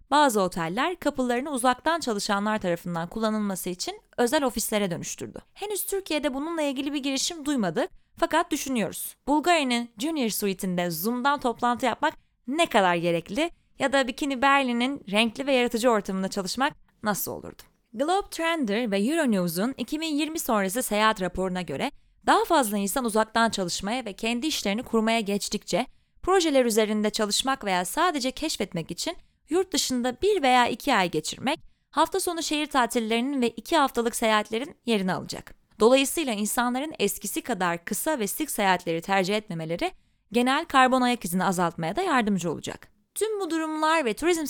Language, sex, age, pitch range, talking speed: Turkish, female, 30-49, 205-300 Hz, 140 wpm